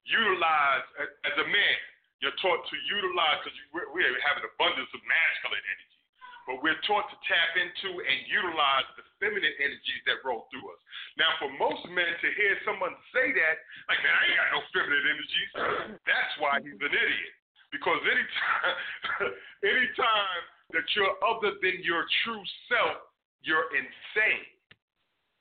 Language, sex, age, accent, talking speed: English, male, 40-59, American, 155 wpm